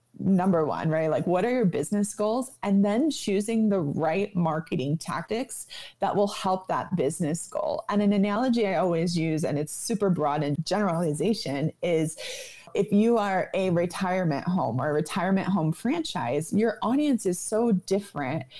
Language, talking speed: English, 165 wpm